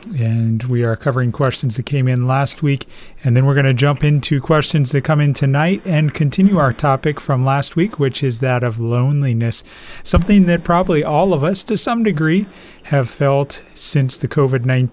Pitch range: 130-155 Hz